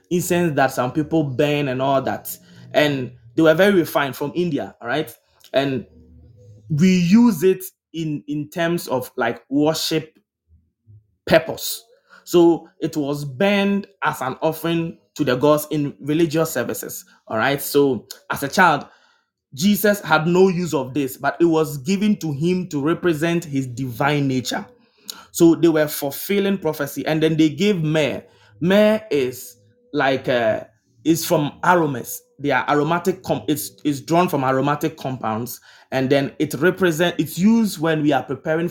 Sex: male